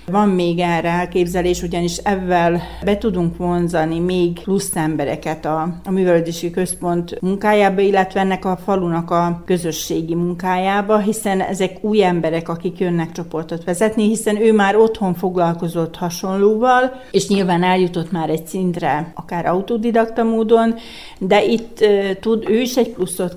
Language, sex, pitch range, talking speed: Hungarian, female, 170-200 Hz, 140 wpm